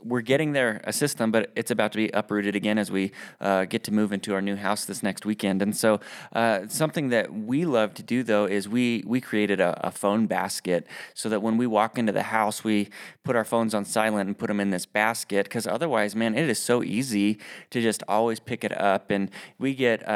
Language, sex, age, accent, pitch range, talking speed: English, male, 20-39, American, 100-120 Hz, 235 wpm